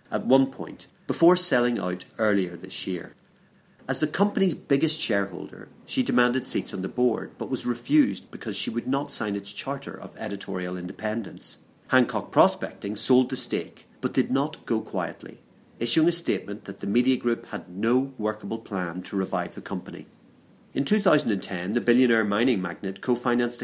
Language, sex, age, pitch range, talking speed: English, male, 40-59, 100-140 Hz, 165 wpm